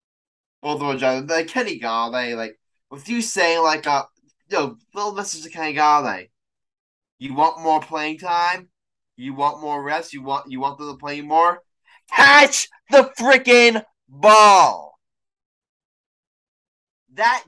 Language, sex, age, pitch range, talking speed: English, male, 10-29, 115-170 Hz, 140 wpm